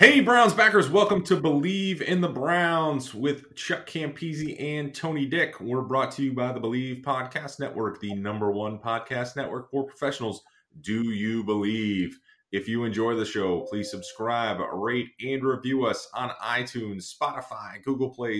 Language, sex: English, male